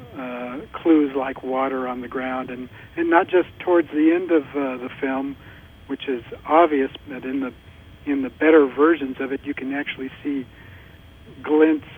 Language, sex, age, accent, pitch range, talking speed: English, male, 60-79, American, 120-140 Hz, 175 wpm